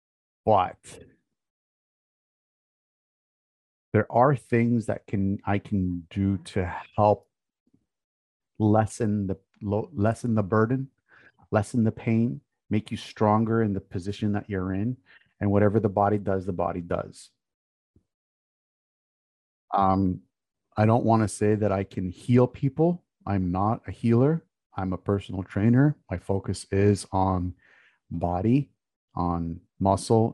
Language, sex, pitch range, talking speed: English, male, 95-120 Hz, 125 wpm